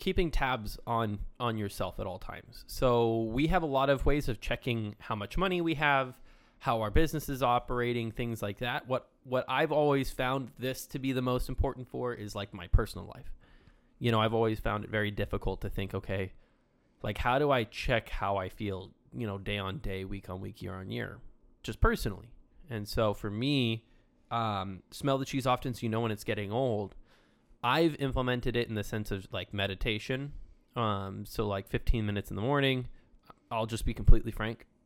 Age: 20-39